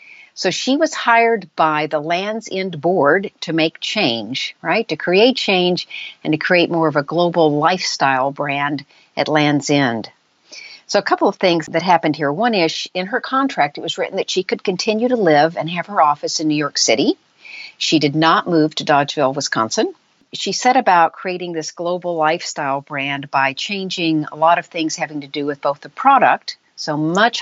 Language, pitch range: English, 150-185 Hz